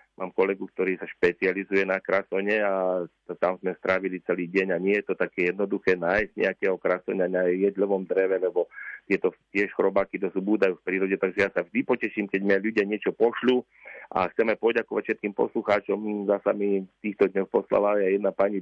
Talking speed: 185 wpm